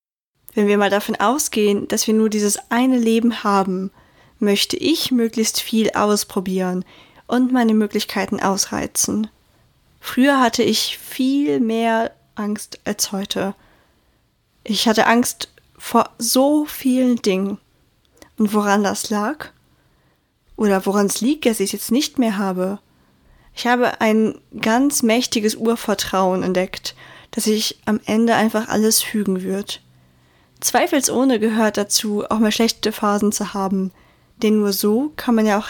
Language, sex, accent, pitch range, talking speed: German, female, German, 200-235 Hz, 140 wpm